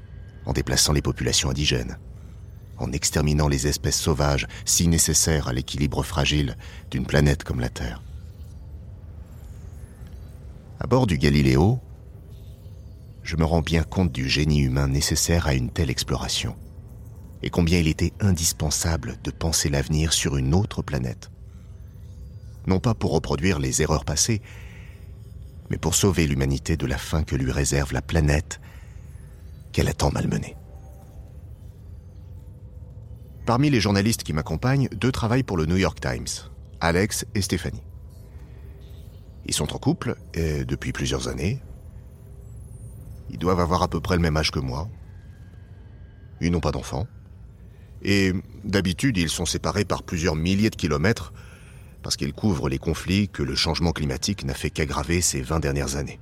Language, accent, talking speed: French, French, 145 wpm